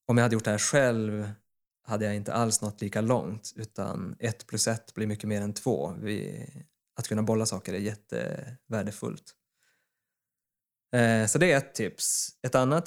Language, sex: Swedish, male